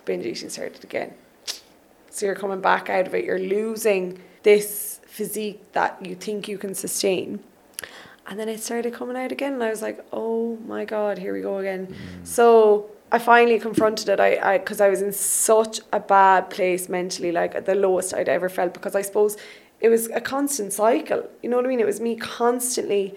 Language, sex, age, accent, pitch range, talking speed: English, female, 20-39, Irish, 190-230 Hz, 205 wpm